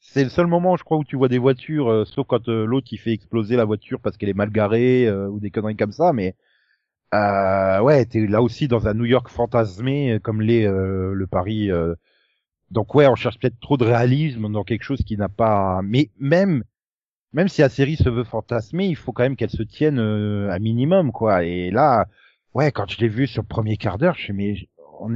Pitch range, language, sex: 110-145 Hz, French, male